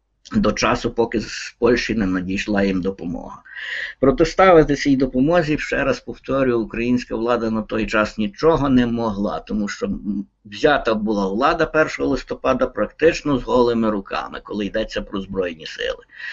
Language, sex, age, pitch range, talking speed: Ukrainian, male, 50-69, 100-125 Hz, 145 wpm